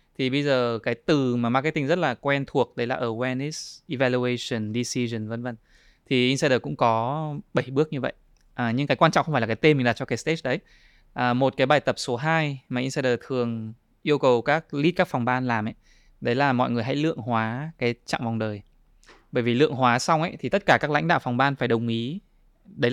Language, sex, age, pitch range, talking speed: Vietnamese, male, 20-39, 120-150 Hz, 235 wpm